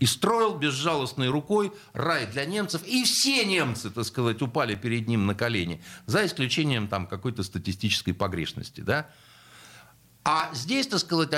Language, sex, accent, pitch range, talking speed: Russian, male, native, 120-165 Hz, 135 wpm